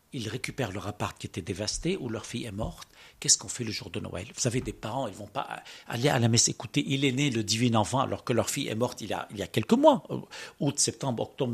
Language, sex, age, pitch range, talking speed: French, male, 60-79, 110-145 Hz, 285 wpm